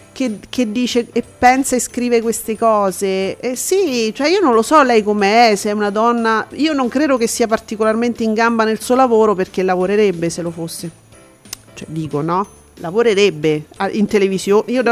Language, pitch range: Italian, 215-275 Hz